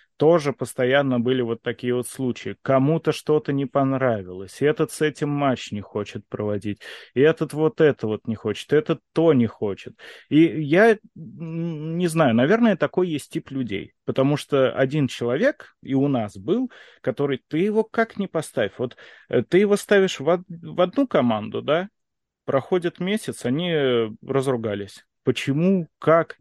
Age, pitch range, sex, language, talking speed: 30-49, 125-165 Hz, male, Russian, 155 wpm